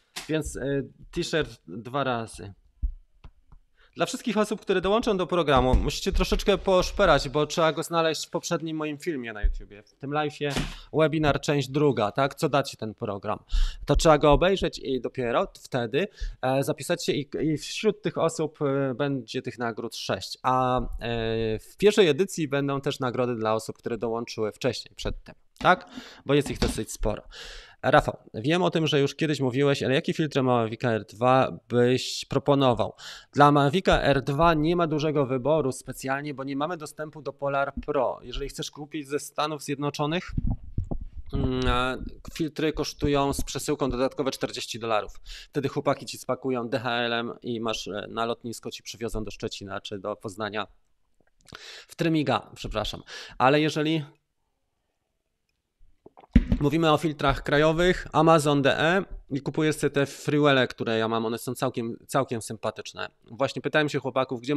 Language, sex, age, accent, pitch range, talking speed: Polish, male, 20-39, native, 120-155 Hz, 150 wpm